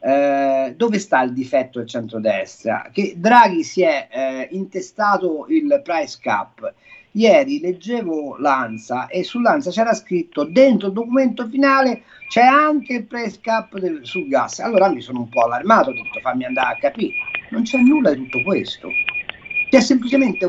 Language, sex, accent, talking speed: Italian, male, native, 160 wpm